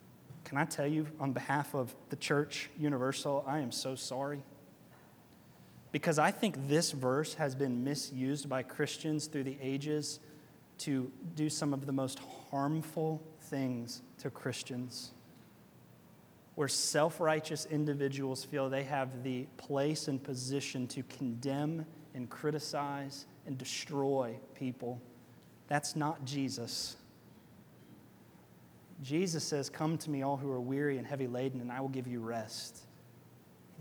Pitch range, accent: 125-145 Hz, American